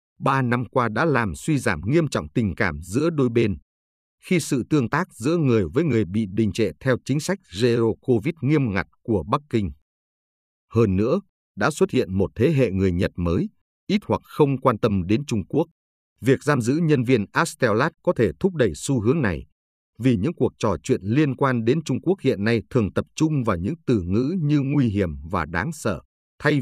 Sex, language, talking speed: male, Vietnamese, 210 wpm